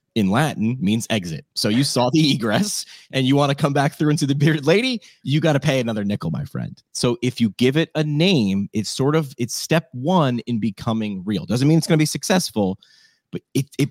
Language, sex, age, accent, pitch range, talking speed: English, male, 30-49, American, 110-150 Hz, 235 wpm